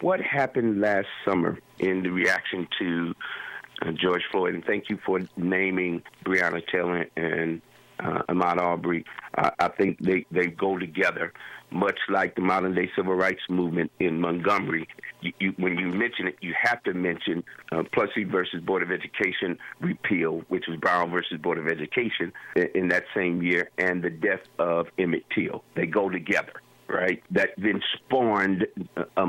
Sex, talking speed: male, 160 wpm